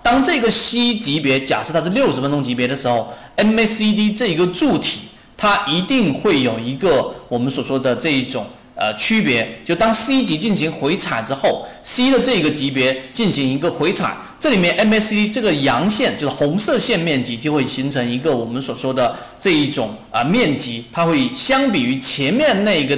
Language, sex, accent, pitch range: Chinese, male, native, 135-225 Hz